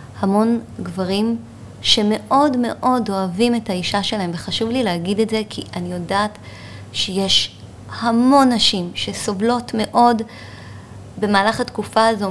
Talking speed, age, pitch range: 115 wpm, 30-49, 170-220 Hz